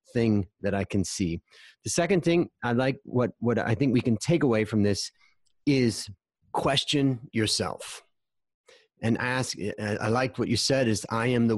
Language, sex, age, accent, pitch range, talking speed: English, male, 30-49, American, 110-140 Hz, 175 wpm